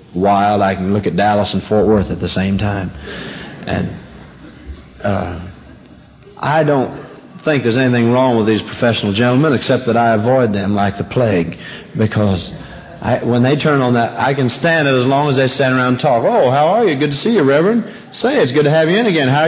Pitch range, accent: 100-140 Hz, American